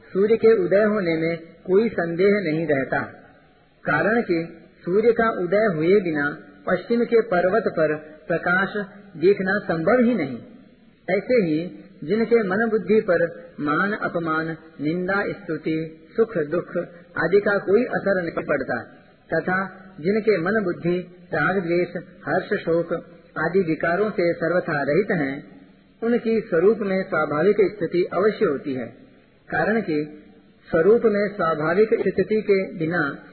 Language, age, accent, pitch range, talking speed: Hindi, 50-69, native, 160-205 Hz, 130 wpm